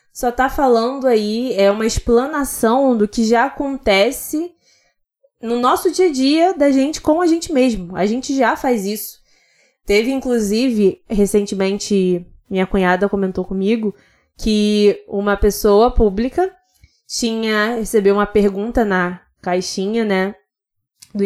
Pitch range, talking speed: 200-255 Hz, 125 wpm